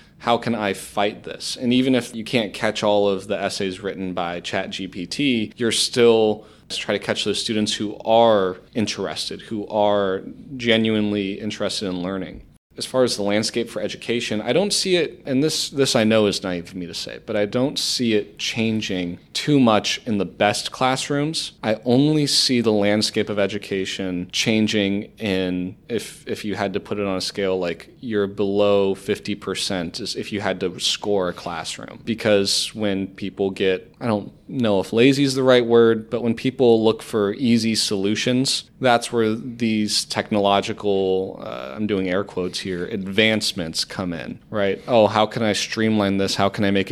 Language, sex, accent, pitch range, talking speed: English, male, American, 100-115 Hz, 185 wpm